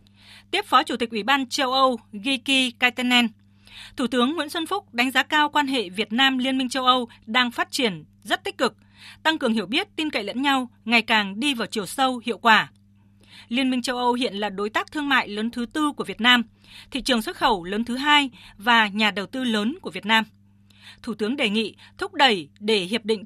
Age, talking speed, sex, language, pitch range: 20-39, 225 wpm, female, Vietnamese, 215-270 Hz